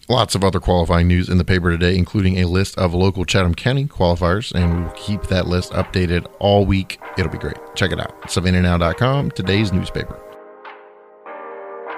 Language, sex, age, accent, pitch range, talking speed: English, male, 30-49, American, 85-110 Hz, 170 wpm